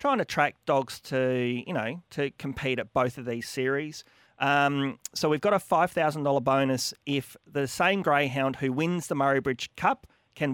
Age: 40-59